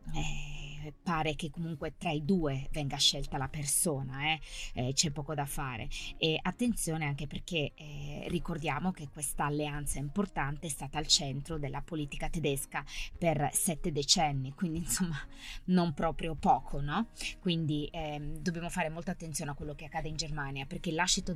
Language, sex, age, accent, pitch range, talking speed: Italian, female, 20-39, native, 150-185 Hz, 160 wpm